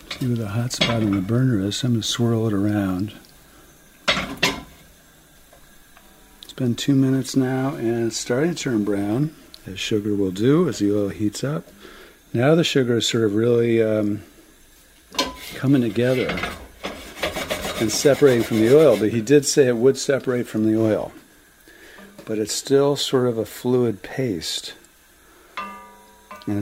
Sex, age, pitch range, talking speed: male, 50-69, 110-130 Hz, 155 wpm